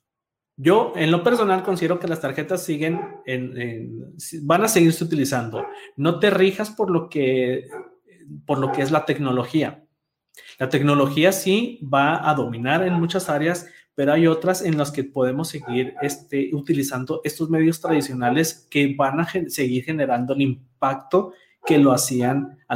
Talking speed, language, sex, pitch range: 160 wpm, Spanish, male, 135-170 Hz